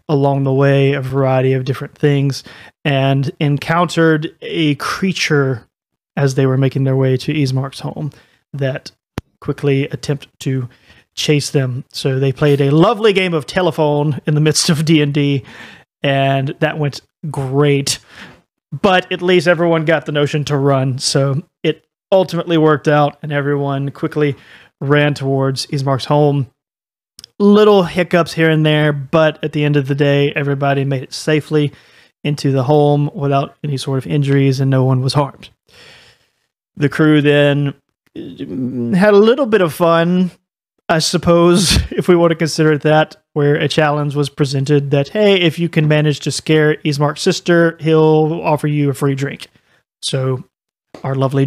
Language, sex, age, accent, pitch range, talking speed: English, male, 30-49, American, 140-160 Hz, 160 wpm